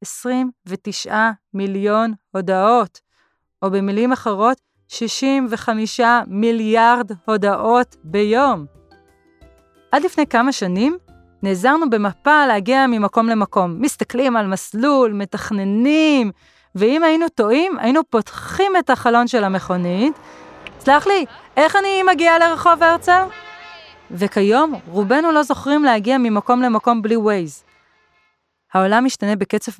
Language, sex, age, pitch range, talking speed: Hebrew, female, 30-49, 195-265 Hz, 105 wpm